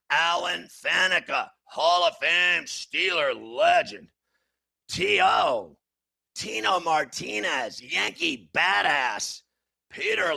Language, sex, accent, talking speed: English, male, American, 75 wpm